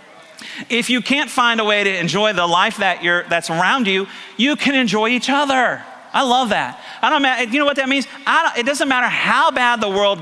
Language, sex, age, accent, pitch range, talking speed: English, male, 40-59, American, 155-235 Hz, 230 wpm